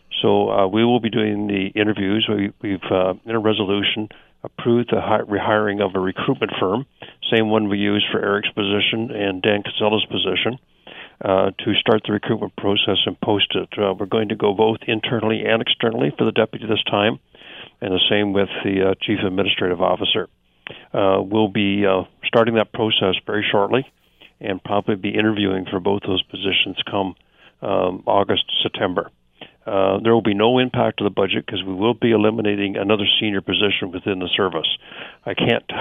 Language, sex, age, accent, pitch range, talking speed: English, male, 50-69, American, 100-110 Hz, 180 wpm